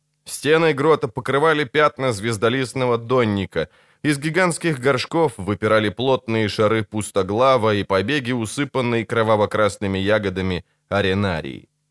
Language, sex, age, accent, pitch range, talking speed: Ukrainian, male, 20-39, native, 110-140 Hz, 95 wpm